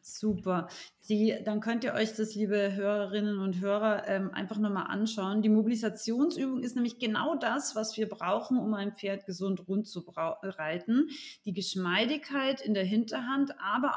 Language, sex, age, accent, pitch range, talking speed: German, female, 30-49, German, 200-270 Hz, 150 wpm